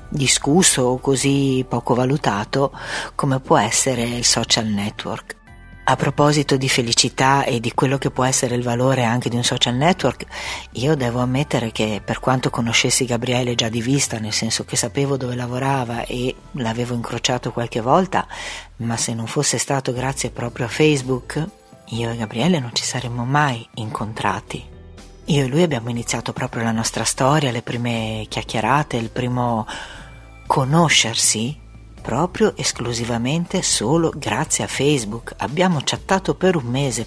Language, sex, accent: Italian, female, native